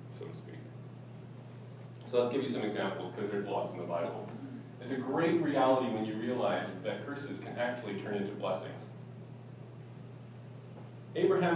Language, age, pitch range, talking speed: English, 30-49, 110-135 Hz, 140 wpm